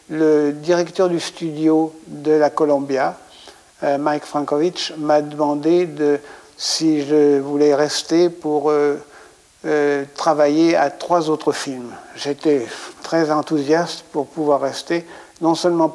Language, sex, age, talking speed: French, male, 60-79, 125 wpm